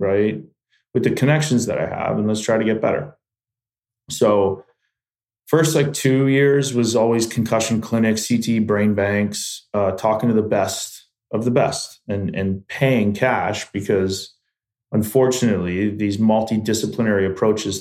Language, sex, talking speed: English, male, 140 wpm